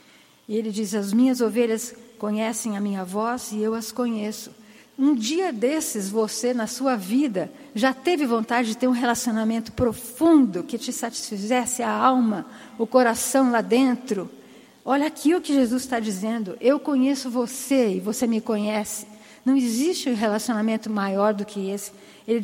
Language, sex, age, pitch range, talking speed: Portuguese, female, 50-69, 215-270 Hz, 165 wpm